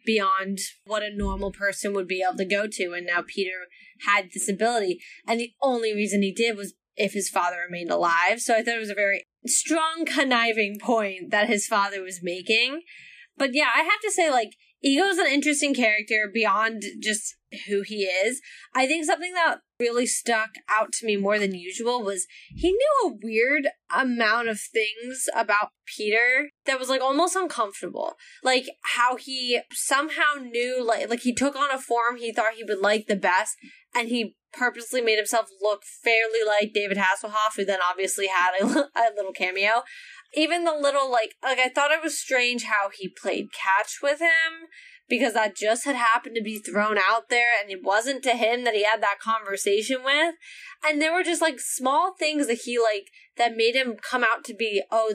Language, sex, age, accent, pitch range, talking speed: English, female, 10-29, American, 210-285 Hz, 195 wpm